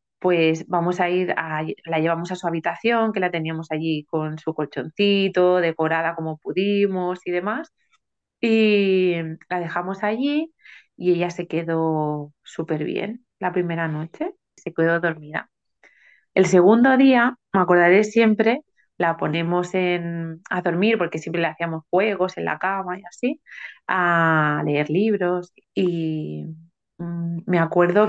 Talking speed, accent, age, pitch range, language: 140 wpm, Spanish, 30-49, 170-195 Hz, Spanish